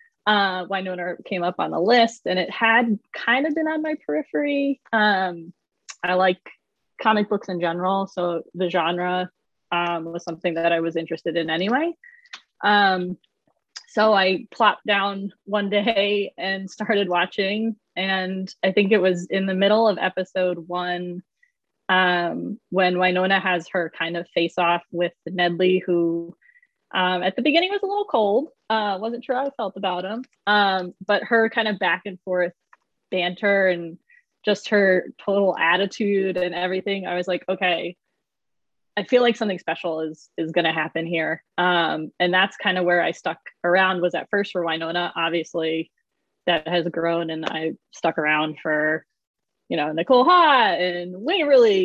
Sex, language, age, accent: female, English, 20-39, American